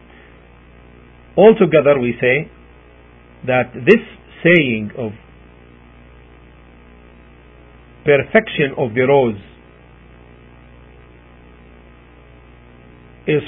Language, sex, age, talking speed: English, male, 50-69, 55 wpm